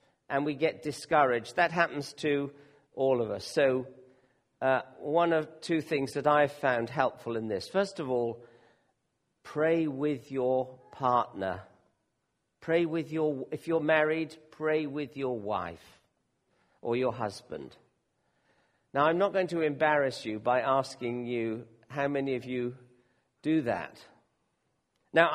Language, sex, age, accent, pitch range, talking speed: English, male, 50-69, British, 125-155 Hz, 140 wpm